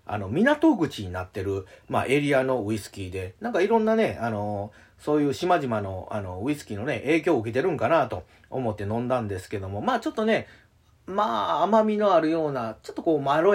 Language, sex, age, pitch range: Japanese, male, 40-59, 110-165 Hz